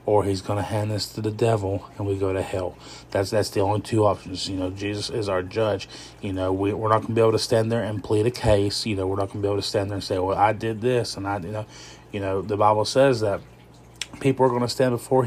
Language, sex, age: English, male, 20-39